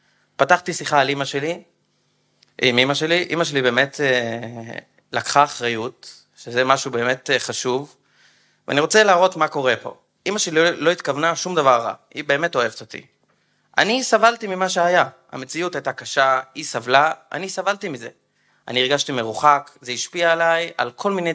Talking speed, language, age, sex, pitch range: 155 wpm, Hebrew, 30-49, male, 130-180 Hz